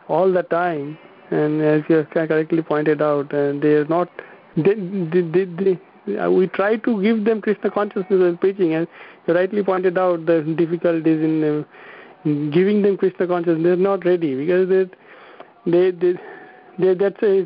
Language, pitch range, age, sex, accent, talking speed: English, 160-190 Hz, 50-69, male, Indian, 160 wpm